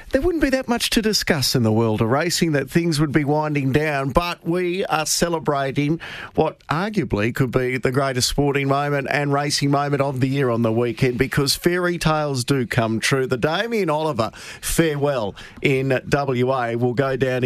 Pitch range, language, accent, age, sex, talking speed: 120-155 Hz, English, Australian, 50-69, male, 185 wpm